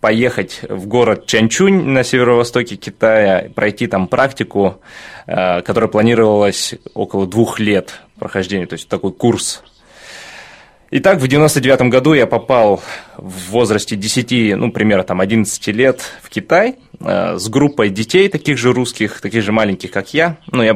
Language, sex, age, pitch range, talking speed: Russian, male, 20-39, 100-125 Hz, 140 wpm